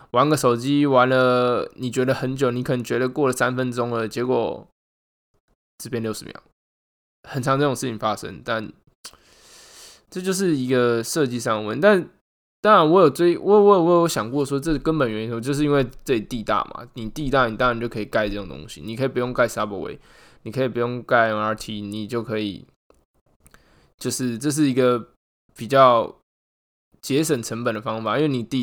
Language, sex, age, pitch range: Chinese, male, 20-39, 110-135 Hz